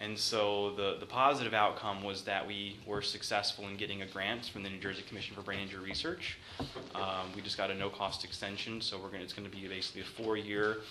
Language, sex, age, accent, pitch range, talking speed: English, male, 20-39, American, 95-105 Hz, 225 wpm